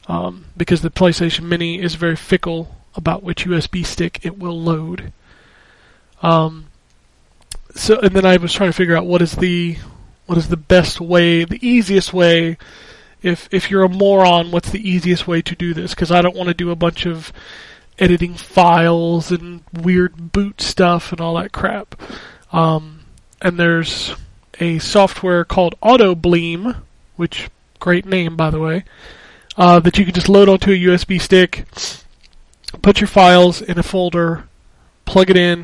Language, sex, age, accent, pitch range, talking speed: English, male, 20-39, American, 170-190 Hz, 175 wpm